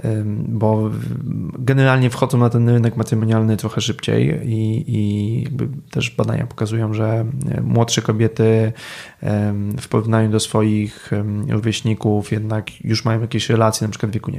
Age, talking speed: 20-39, 130 wpm